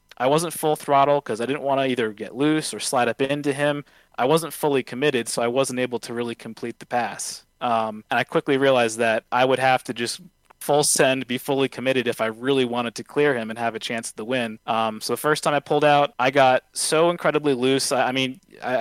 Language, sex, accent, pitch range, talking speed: English, male, American, 120-145 Hz, 240 wpm